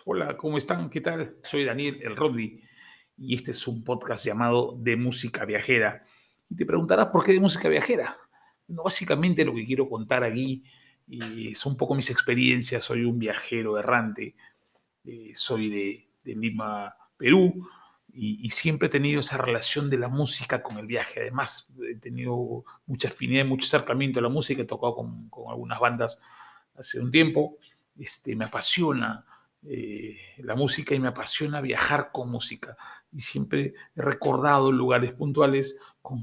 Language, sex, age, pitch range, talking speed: Spanish, male, 40-59, 120-145 Hz, 165 wpm